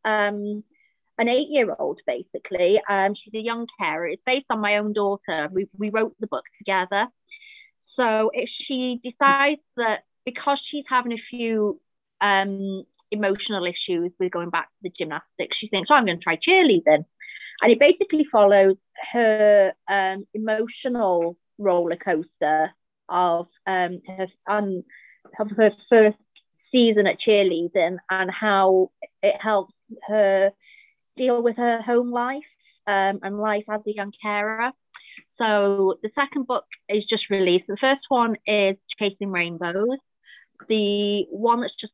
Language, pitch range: English, 190-230 Hz